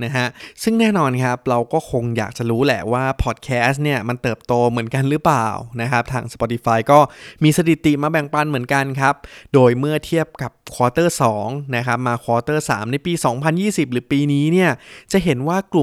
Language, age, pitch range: Thai, 20-39, 120-155 Hz